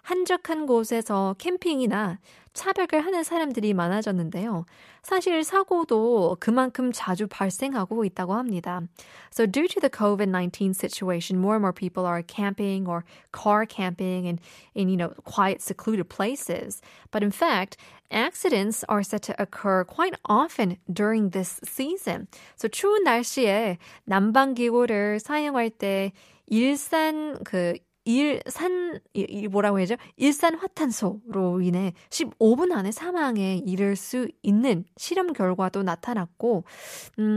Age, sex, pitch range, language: 20-39, female, 190-270 Hz, Korean